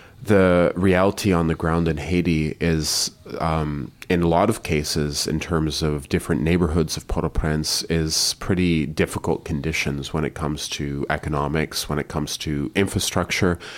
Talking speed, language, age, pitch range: 155 wpm, English, 30-49, 75-90 Hz